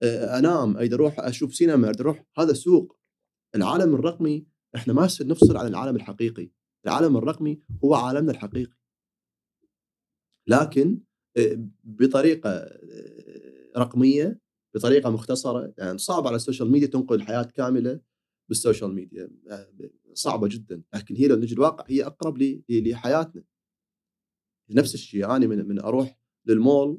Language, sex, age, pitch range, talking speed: Arabic, male, 30-49, 115-150 Hz, 125 wpm